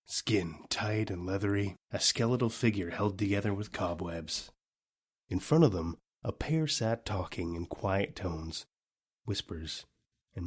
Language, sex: English, male